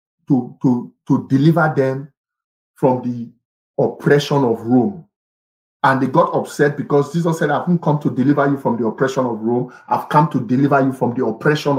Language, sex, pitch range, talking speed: English, male, 130-175 Hz, 185 wpm